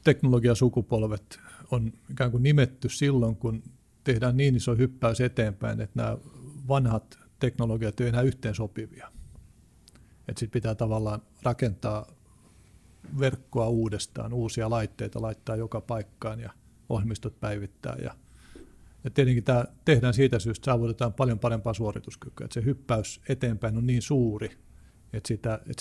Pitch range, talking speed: 110-125 Hz, 130 wpm